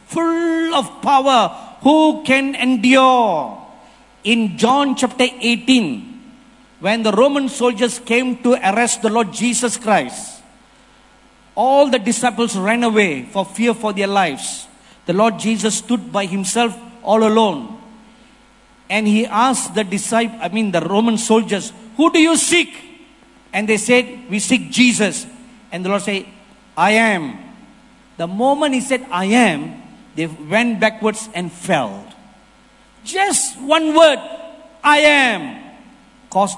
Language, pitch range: English, 200-260 Hz